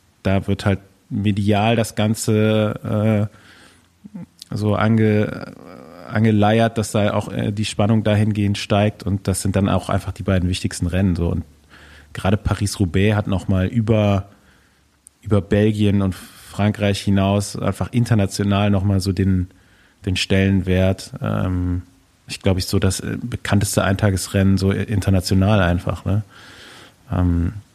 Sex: male